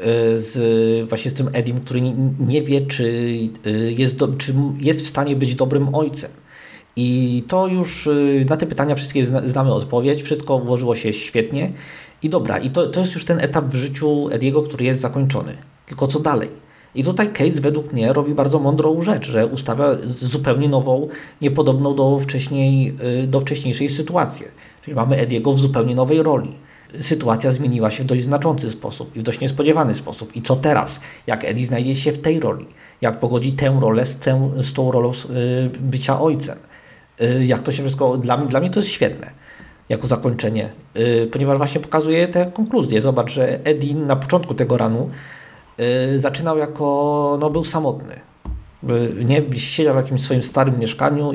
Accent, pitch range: native, 125-145 Hz